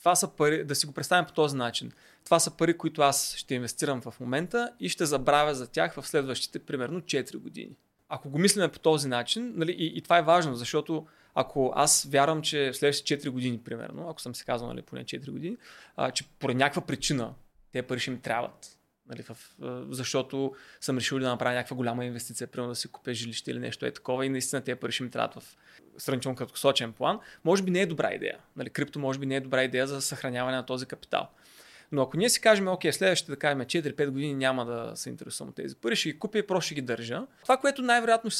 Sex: male